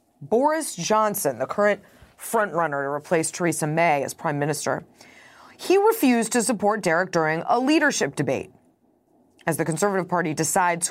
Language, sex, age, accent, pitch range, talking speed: English, female, 30-49, American, 165-240 Hz, 145 wpm